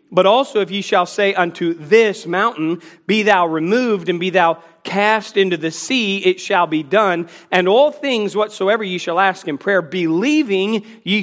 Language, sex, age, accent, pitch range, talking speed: English, male, 40-59, American, 180-235 Hz, 180 wpm